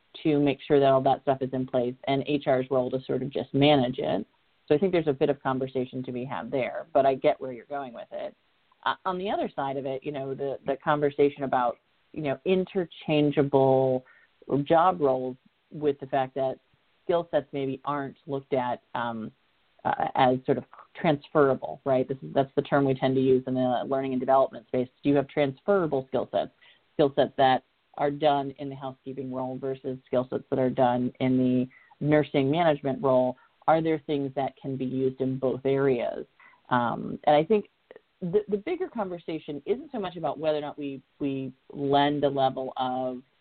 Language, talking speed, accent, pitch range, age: English, 200 wpm, American, 130-150 Hz, 40-59